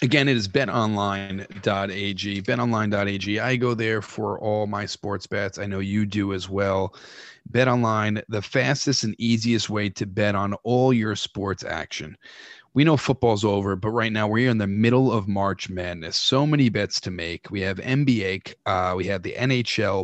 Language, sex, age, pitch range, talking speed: English, male, 30-49, 100-125 Hz, 180 wpm